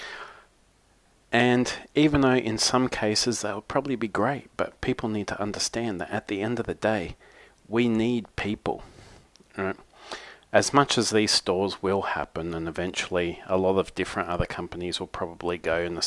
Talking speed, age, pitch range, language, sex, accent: 175 wpm, 40-59, 90-115 Hz, English, male, Australian